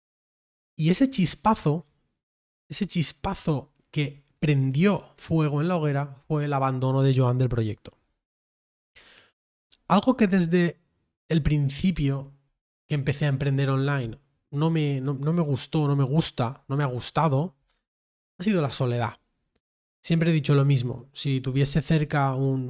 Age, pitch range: 20-39, 135-165 Hz